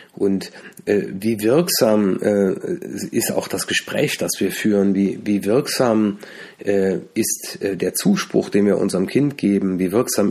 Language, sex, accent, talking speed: German, male, German, 155 wpm